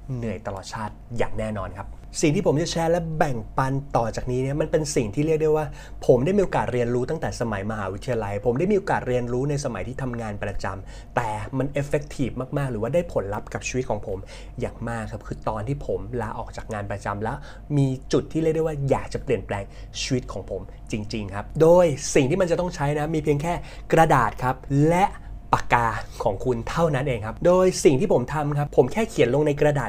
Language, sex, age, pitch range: Thai, male, 20-39, 115-150 Hz